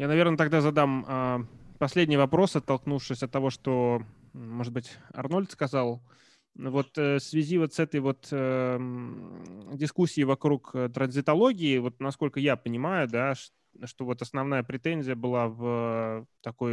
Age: 20-39